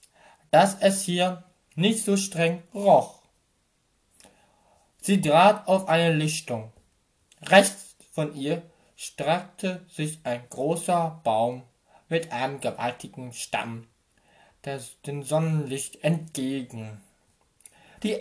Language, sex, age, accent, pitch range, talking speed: German, male, 20-39, German, 130-180 Hz, 90 wpm